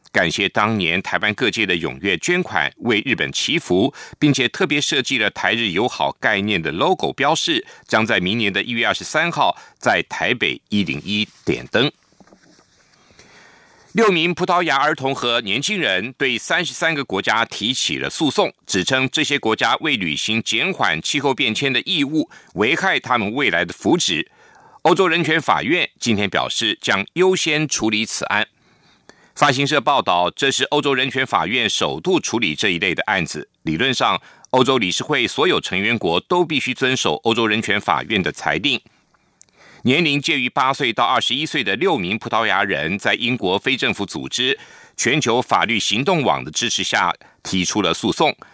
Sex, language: male, German